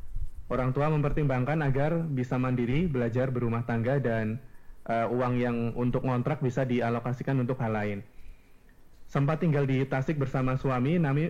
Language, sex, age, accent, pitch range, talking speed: Indonesian, male, 20-39, native, 120-145 Hz, 145 wpm